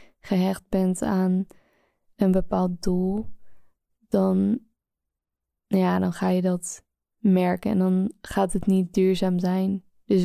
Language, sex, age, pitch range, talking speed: Dutch, female, 20-39, 180-200 Hz, 125 wpm